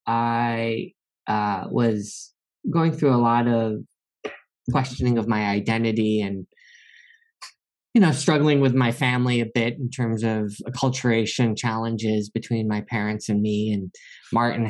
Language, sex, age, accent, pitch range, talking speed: English, male, 20-39, American, 105-135 Hz, 135 wpm